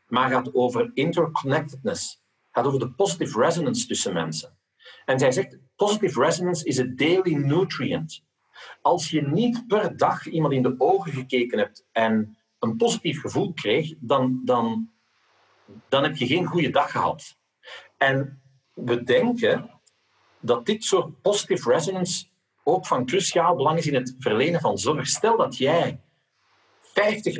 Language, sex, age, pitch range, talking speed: English, male, 50-69, 125-180 Hz, 145 wpm